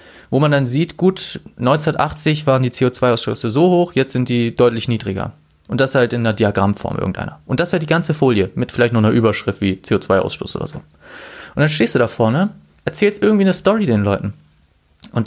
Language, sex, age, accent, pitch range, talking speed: German, male, 30-49, German, 105-135 Hz, 205 wpm